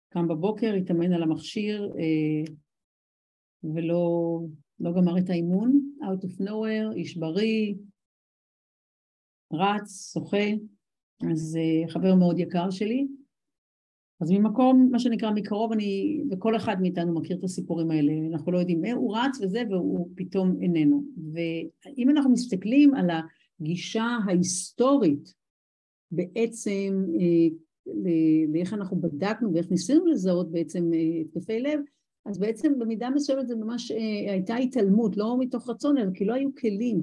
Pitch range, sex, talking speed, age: 170-225 Hz, female, 125 wpm, 50-69